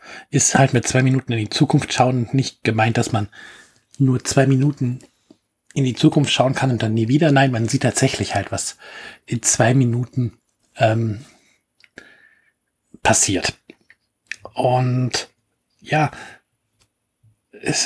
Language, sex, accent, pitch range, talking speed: German, male, German, 115-135 Hz, 130 wpm